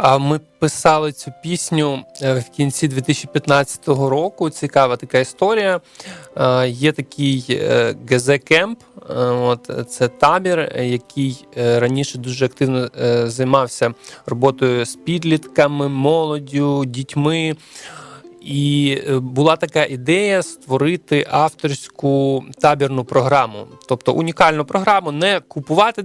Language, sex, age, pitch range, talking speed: Ukrainian, male, 20-39, 130-160 Hz, 90 wpm